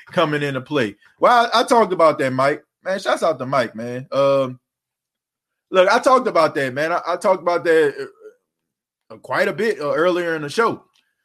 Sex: male